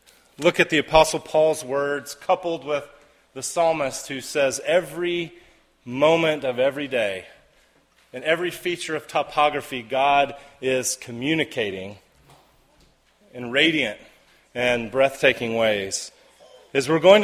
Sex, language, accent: male, English, American